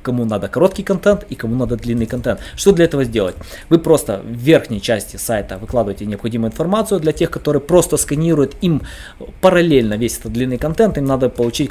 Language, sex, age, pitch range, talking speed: Russian, male, 20-39, 120-165 Hz, 185 wpm